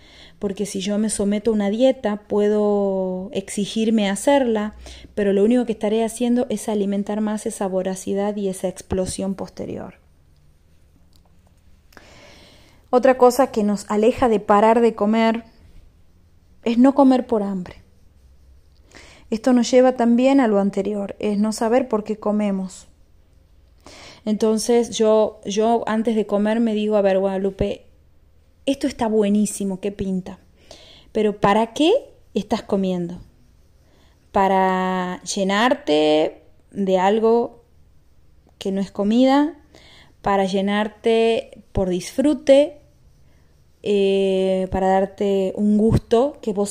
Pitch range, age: 180-225 Hz, 30-49